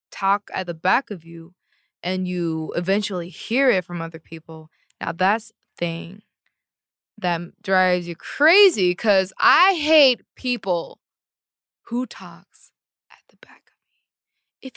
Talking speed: 135 wpm